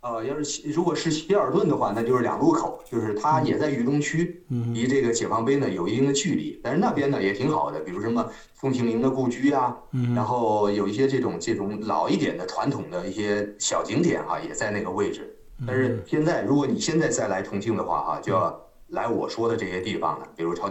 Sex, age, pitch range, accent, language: male, 30-49, 110-150 Hz, native, Chinese